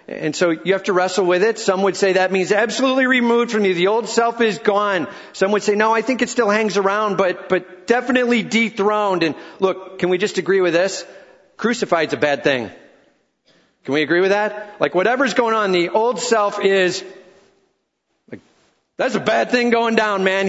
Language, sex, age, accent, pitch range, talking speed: English, male, 40-59, American, 170-215 Hz, 200 wpm